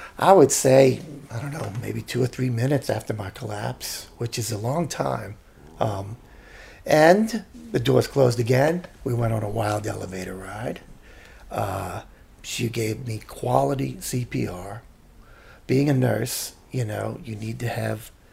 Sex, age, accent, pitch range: male, 50-69, American, 110-140 Hz